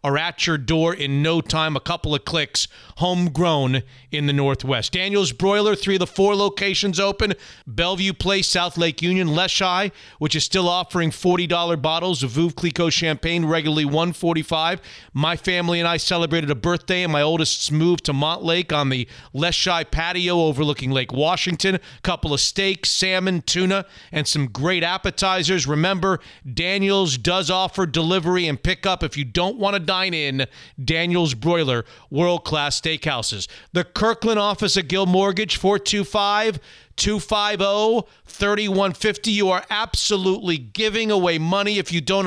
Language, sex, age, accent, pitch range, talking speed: English, male, 40-59, American, 160-195 Hz, 150 wpm